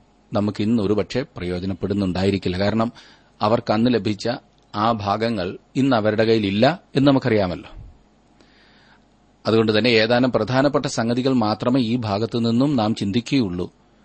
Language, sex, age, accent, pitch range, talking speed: Malayalam, male, 30-49, native, 100-125 Hz, 100 wpm